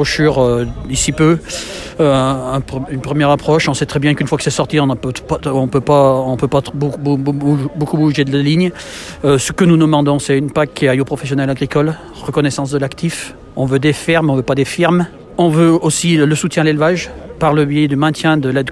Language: French